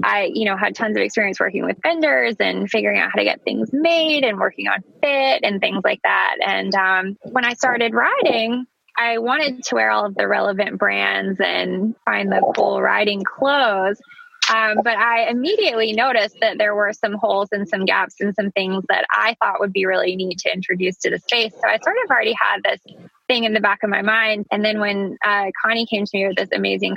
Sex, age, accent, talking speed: female, 20-39, American, 220 wpm